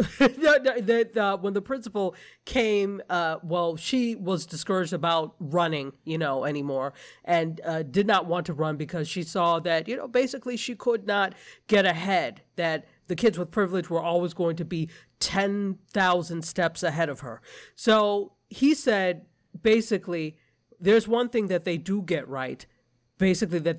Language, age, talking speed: English, 40-59, 160 wpm